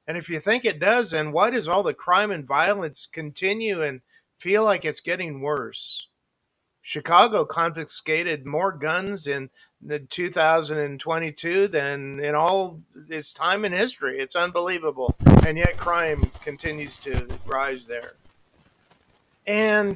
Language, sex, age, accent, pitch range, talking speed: English, male, 50-69, American, 155-205 Hz, 135 wpm